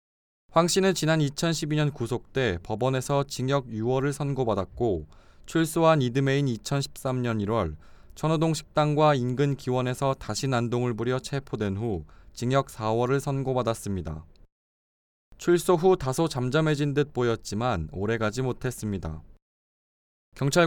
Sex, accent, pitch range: male, native, 110-150 Hz